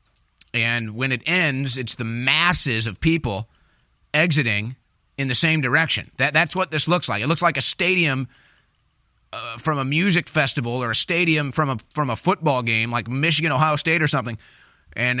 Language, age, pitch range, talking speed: English, 30-49, 125-165 Hz, 180 wpm